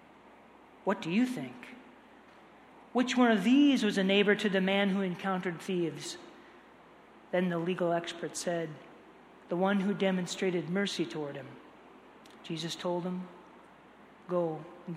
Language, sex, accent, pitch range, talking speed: English, male, American, 175-210 Hz, 135 wpm